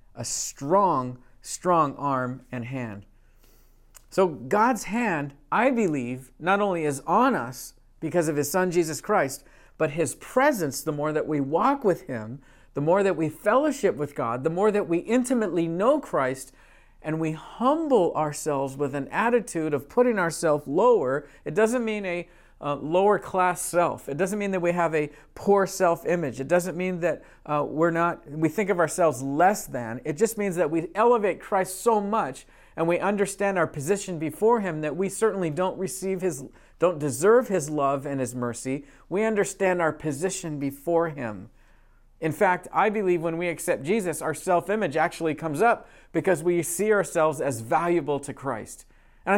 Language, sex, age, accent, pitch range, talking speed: English, male, 50-69, American, 145-200 Hz, 175 wpm